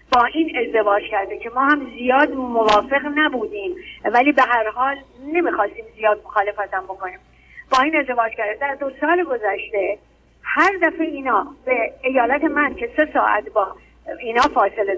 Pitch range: 235-325 Hz